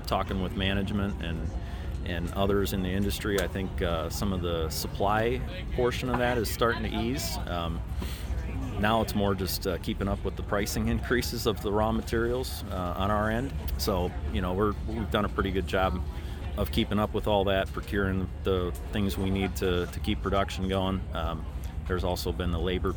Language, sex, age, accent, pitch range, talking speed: English, male, 30-49, American, 85-105 Hz, 195 wpm